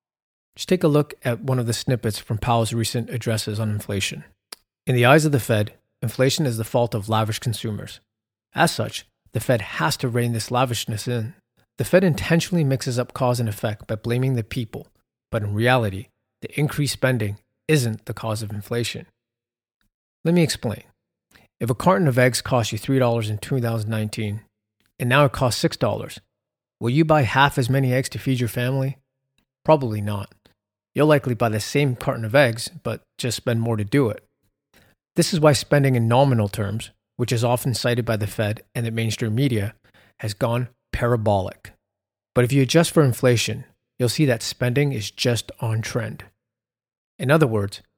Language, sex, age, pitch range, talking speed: English, male, 30-49, 110-130 Hz, 180 wpm